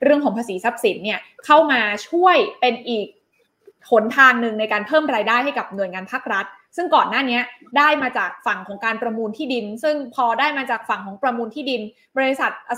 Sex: female